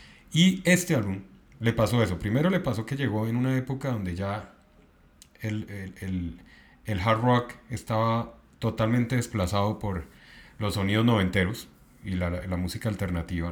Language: Spanish